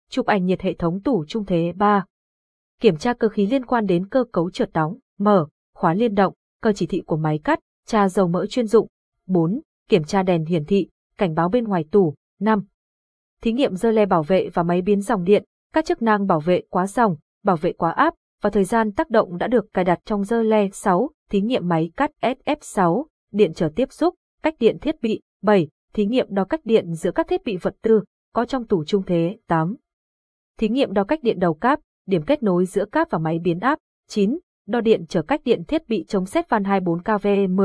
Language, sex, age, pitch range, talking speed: Vietnamese, female, 20-39, 180-230 Hz, 225 wpm